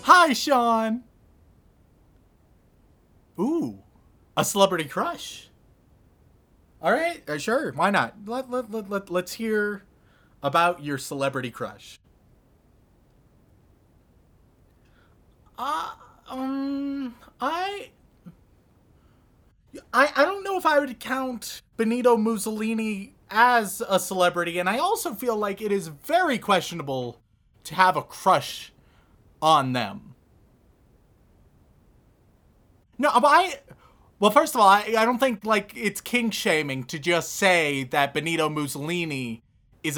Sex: male